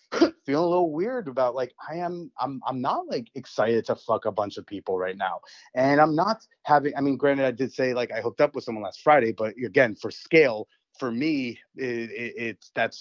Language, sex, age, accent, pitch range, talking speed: English, male, 30-49, American, 120-145 Hz, 225 wpm